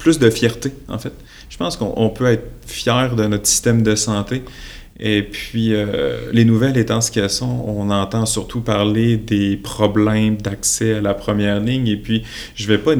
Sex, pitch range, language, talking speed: male, 105-120 Hz, French, 200 wpm